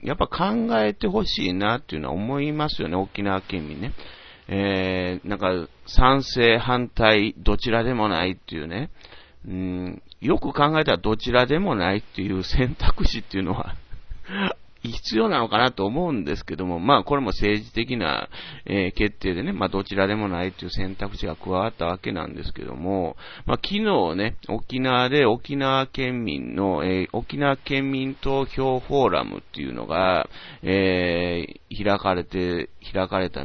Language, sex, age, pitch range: Japanese, male, 40-59, 90-120 Hz